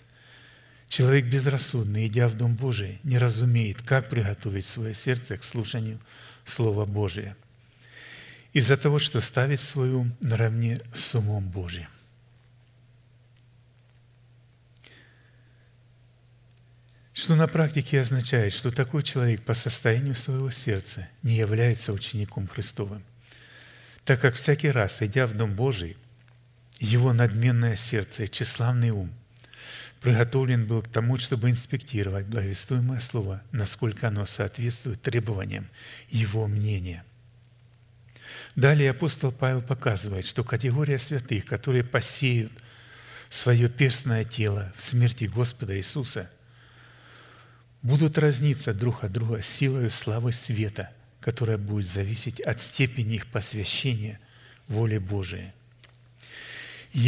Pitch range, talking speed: 110-125 Hz, 110 wpm